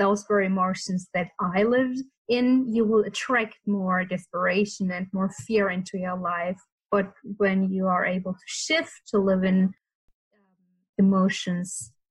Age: 20-39